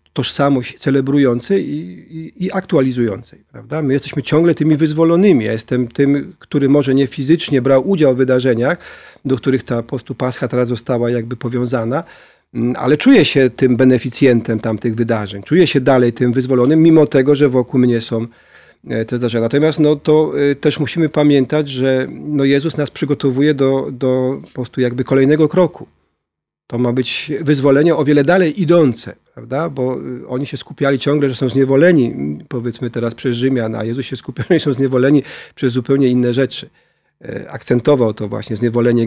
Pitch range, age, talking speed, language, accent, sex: 125-145 Hz, 40-59, 160 wpm, Polish, native, male